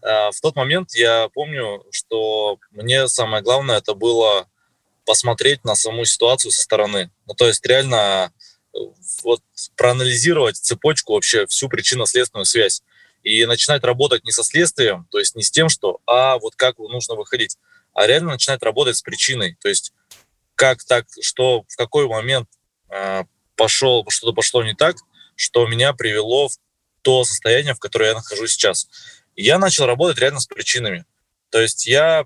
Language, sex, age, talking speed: Russian, male, 20-39, 155 wpm